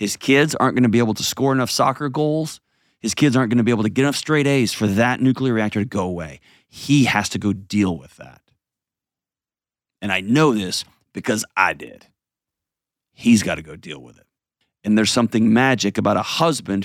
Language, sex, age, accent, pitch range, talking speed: English, male, 30-49, American, 100-130 Hz, 200 wpm